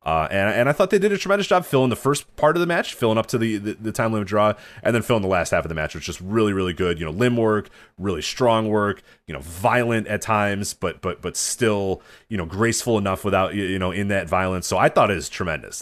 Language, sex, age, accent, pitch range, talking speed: English, male, 30-49, American, 85-110 Hz, 275 wpm